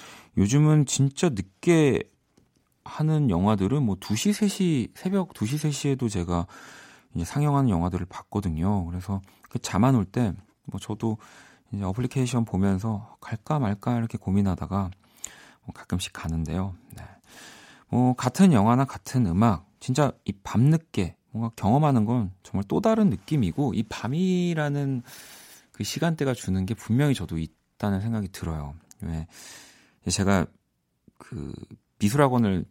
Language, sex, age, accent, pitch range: Korean, male, 40-59, native, 95-135 Hz